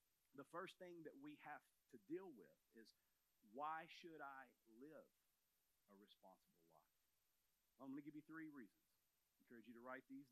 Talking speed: 175 wpm